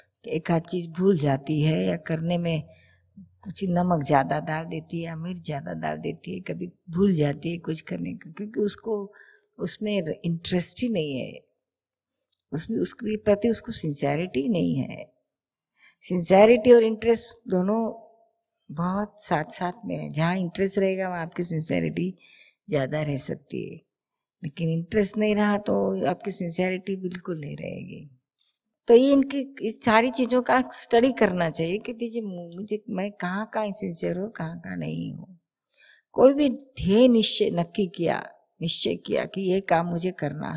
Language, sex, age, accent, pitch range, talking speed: Hindi, female, 50-69, native, 165-215 Hz, 150 wpm